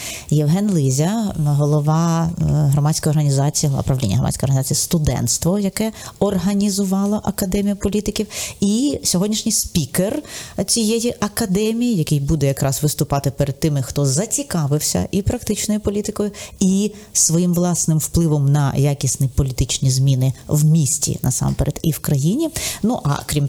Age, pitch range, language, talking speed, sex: 30-49, 130-175 Hz, Ukrainian, 120 wpm, female